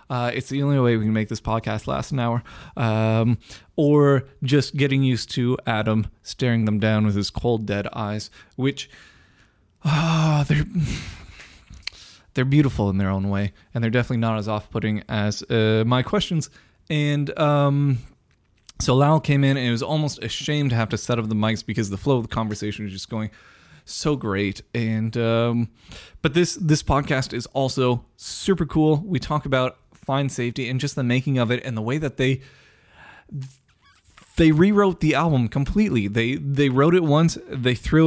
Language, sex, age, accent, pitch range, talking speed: English, male, 20-39, American, 110-140 Hz, 185 wpm